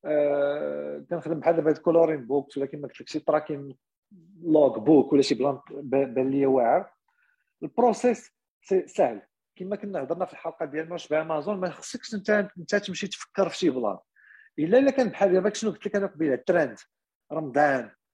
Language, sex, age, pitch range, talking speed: French, male, 50-69, 150-205 Hz, 155 wpm